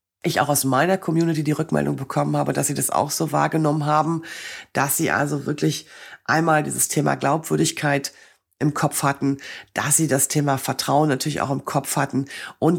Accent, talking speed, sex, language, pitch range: German, 180 wpm, female, German, 140-175 Hz